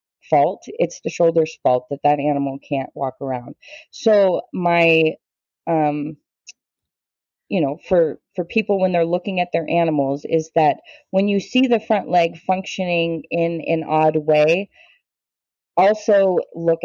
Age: 30-49